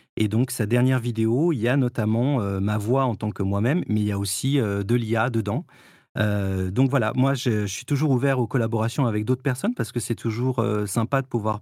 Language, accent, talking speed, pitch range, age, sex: French, French, 245 wpm, 110-140 Hz, 40-59, male